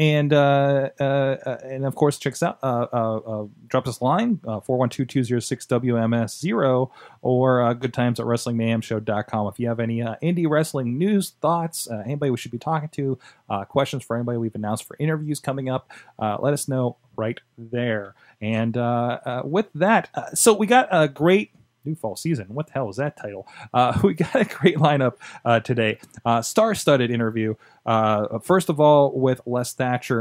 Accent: American